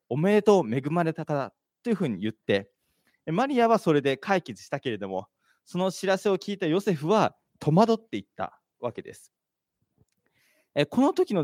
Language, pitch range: Japanese, 135-215 Hz